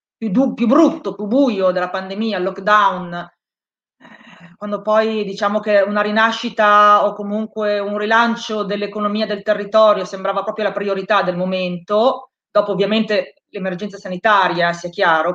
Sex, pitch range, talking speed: female, 185-220 Hz, 135 wpm